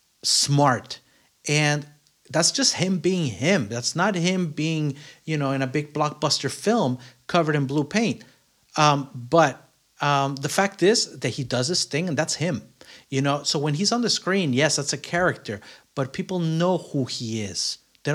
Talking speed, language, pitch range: 180 wpm, English, 135-170 Hz